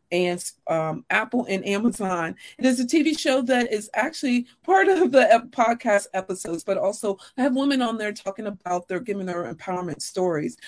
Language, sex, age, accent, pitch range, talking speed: English, female, 40-59, American, 180-245 Hz, 180 wpm